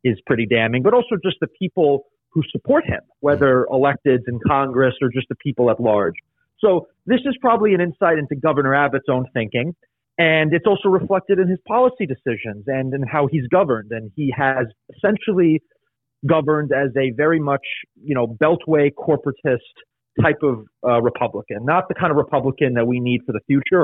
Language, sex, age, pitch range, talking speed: English, male, 30-49, 125-155 Hz, 185 wpm